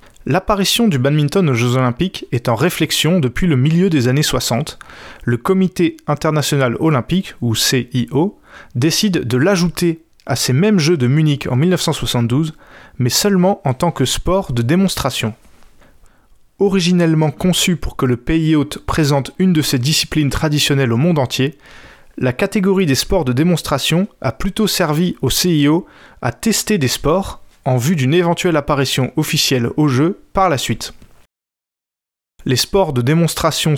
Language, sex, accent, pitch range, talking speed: French, male, French, 130-175 Hz, 150 wpm